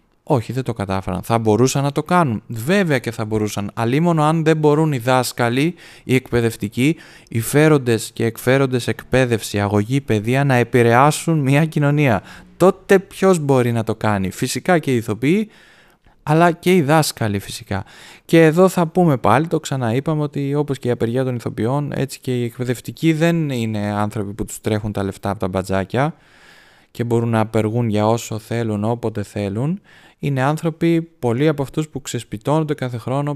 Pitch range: 115-145 Hz